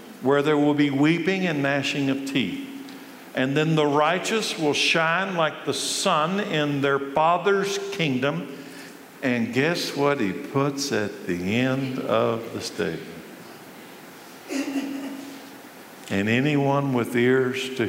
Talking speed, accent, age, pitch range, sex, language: 130 wpm, American, 50-69, 115-160 Hz, male, English